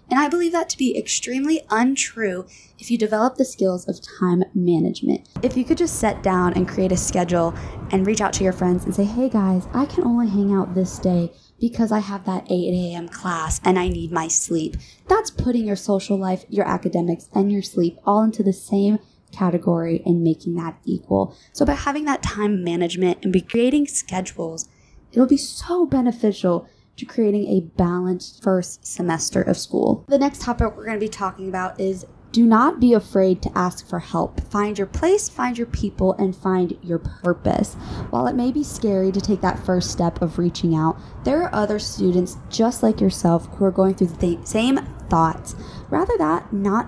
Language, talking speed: English, 195 wpm